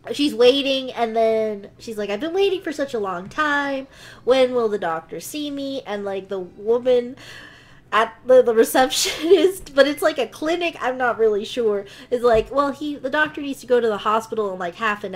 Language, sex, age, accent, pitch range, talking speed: English, female, 20-39, American, 210-295 Hz, 210 wpm